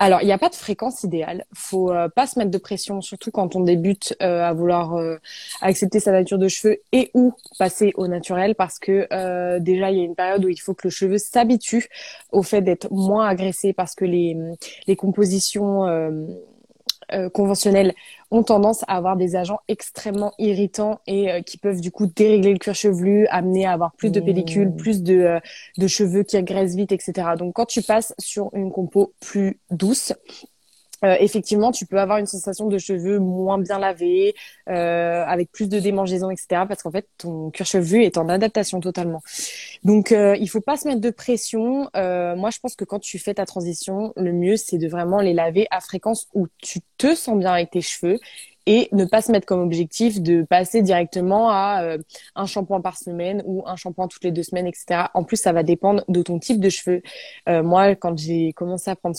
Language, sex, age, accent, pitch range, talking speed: French, female, 20-39, French, 180-205 Hz, 215 wpm